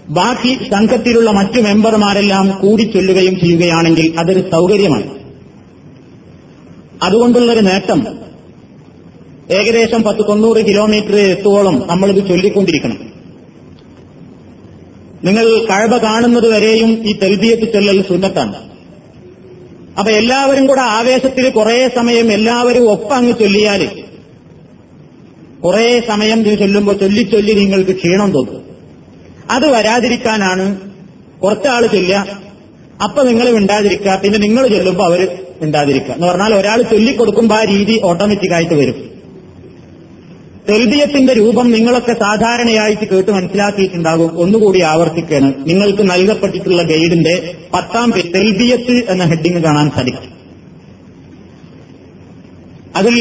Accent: native